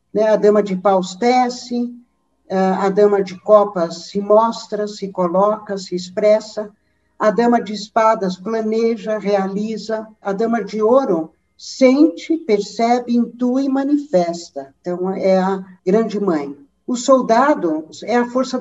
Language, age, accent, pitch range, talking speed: Portuguese, 60-79, Brazilian, 195-235 Hz, 125 wpm